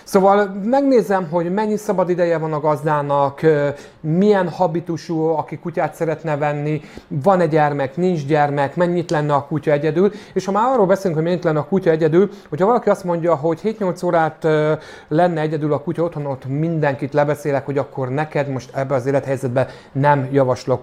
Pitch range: 145-175 Hz